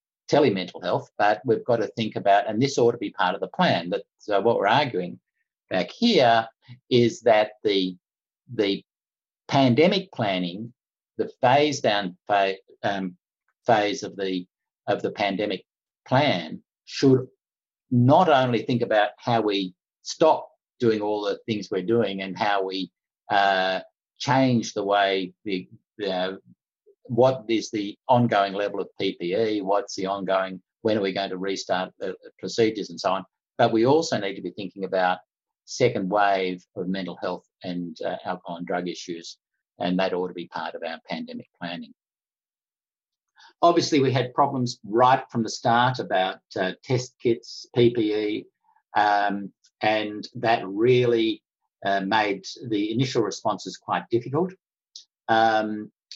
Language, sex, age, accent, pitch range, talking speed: English, male, 50-69, Australian, 95-125 Hz, 150 wpm